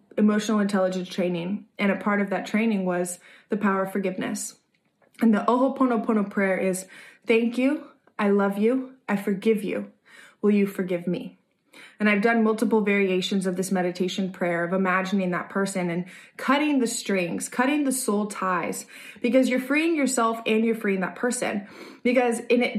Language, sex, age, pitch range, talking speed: English, female, 20-39, 195-245 Hz, 165 wpm